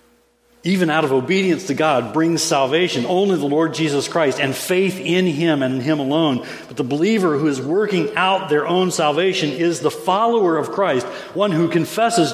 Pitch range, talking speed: 130-185 Hz, 190 wpm